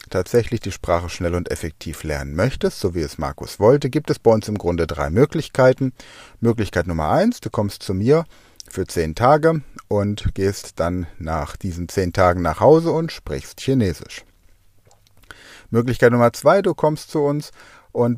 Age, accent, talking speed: 40-59, German, 170 wpm